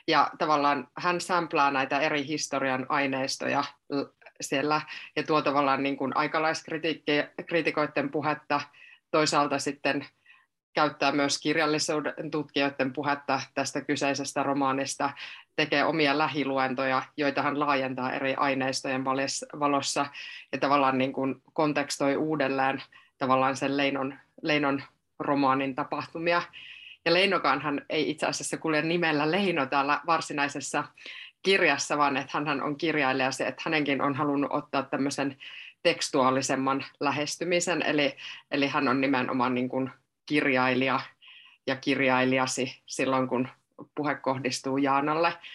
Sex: female